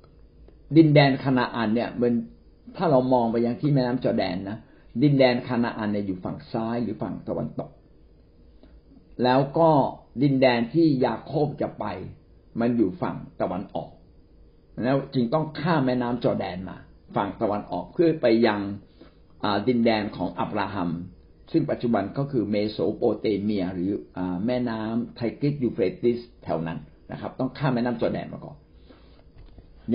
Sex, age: male, 60-79